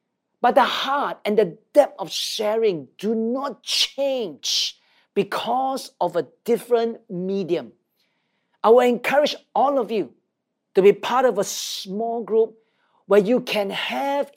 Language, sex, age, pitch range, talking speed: English, male, 40-59, 195-250 Hz, 140 wpm